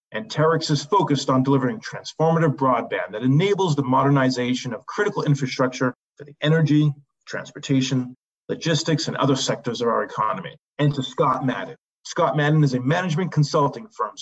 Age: 40-59